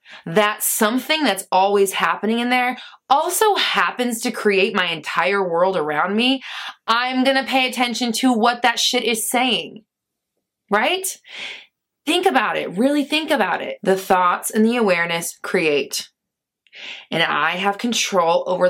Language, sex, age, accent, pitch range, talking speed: English, female, 20-39, American, 195-260 Hz, 145 wpm